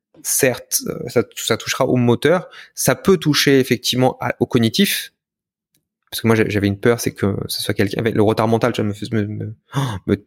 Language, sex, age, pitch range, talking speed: French, male, 20-39, 115-140 Hz, 185 wpm